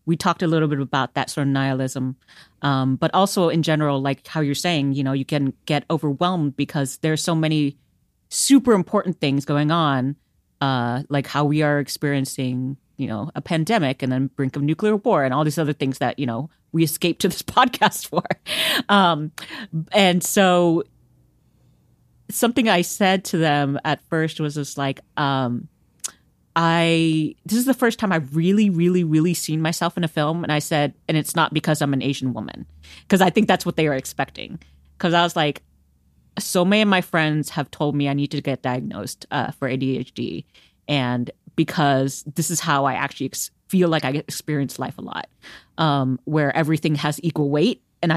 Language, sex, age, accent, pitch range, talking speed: English, female, 40-59, American, 135-170 Hz, 190 wpm